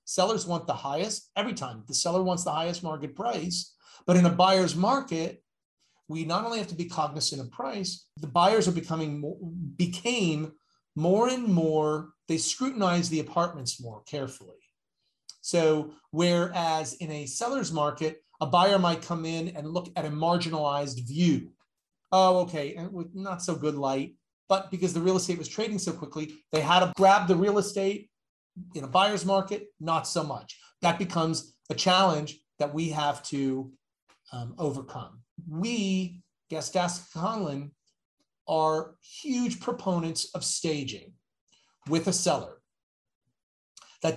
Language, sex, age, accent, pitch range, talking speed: English, male, 40-59, American, 155-185 Hz, 150 wpm